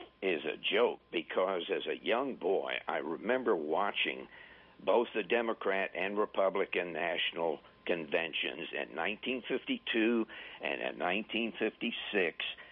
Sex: male